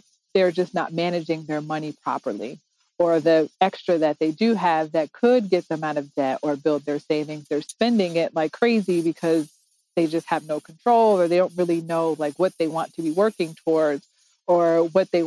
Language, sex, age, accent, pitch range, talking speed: English, female, 40-59, American, 155-175 Hz, 205 wpm